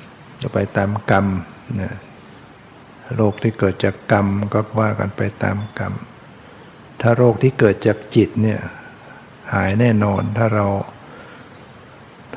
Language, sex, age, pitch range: Thai, male, 60-79, 105-120 Hz